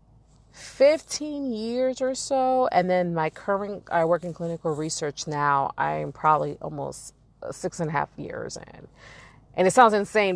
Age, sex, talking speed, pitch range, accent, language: 30-49, female, 155 wpm, 145-180 Hz, American, English